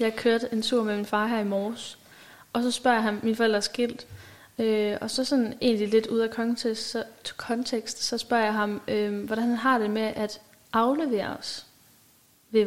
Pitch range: 215-240 Hz